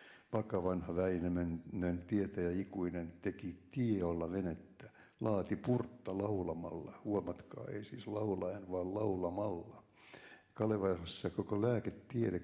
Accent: native